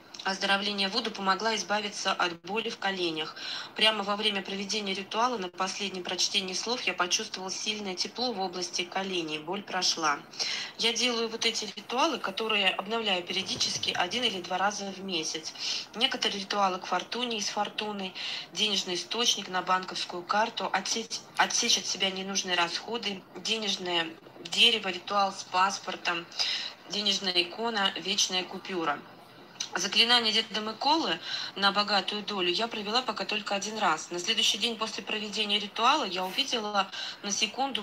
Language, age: Russian, 20-39